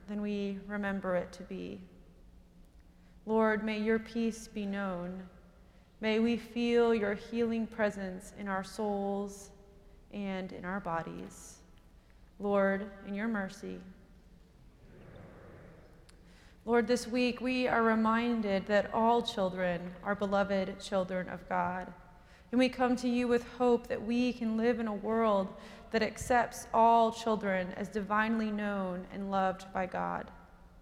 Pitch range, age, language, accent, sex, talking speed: 190-225 Hz, 30-49, English, American, female, 130 wpm